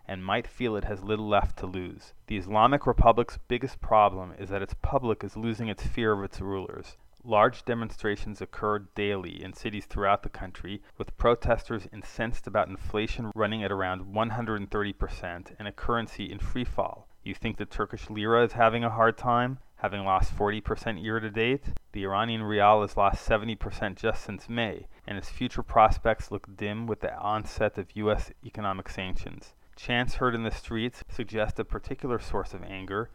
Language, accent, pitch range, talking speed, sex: English, American, 100-115 Hz, 170 wpm, male